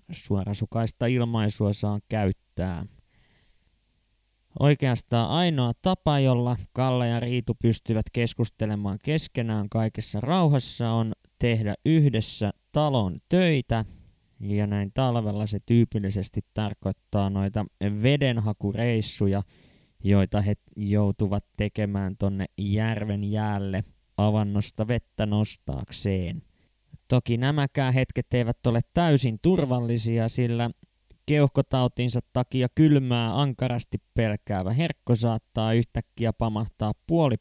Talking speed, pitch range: 90 wpm, 105-125 Hz